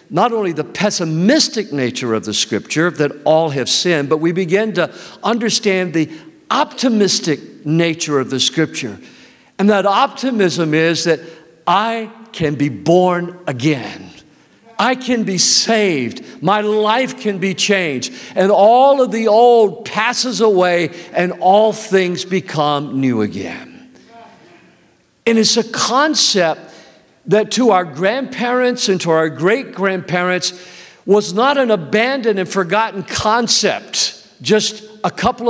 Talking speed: 130 wpm